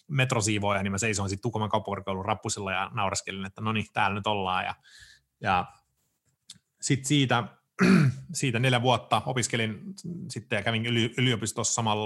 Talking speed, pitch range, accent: 145 wpm, 105-135 Hz, native